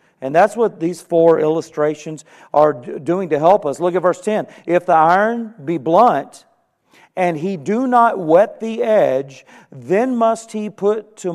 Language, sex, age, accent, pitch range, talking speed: English, male, 50-69, American, 135-170 Hz, 170 wpm